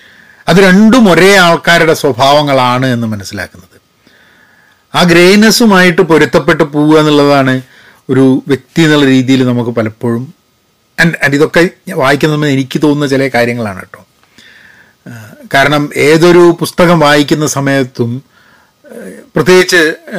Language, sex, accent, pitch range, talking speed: Malayalam, male, native, 140-180 Hz, 100 wpm